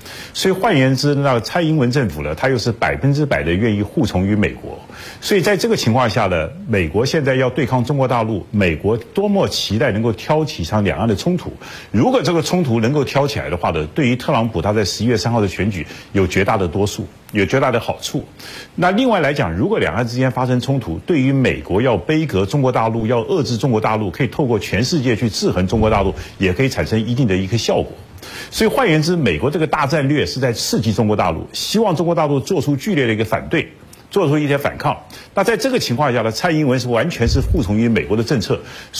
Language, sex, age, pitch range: Chinese, male, 50-69, 105-150 Hz